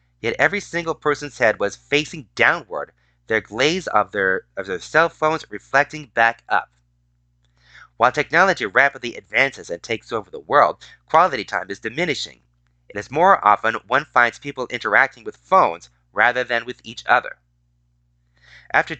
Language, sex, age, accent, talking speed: English, male, 30-49, American, 150 wpm